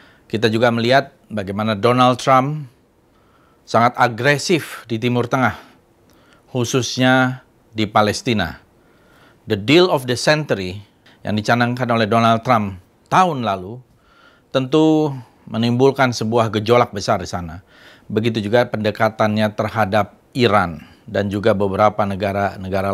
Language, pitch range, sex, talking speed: Indonesian, 100-125 Hz, male, 110 wpm